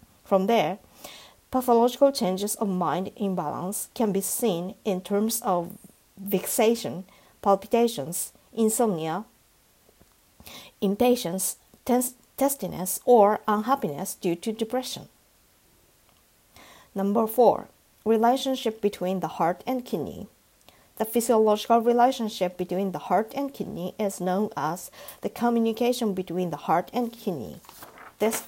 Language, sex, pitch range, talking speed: English, female, 185-235 Hz, 105 wpm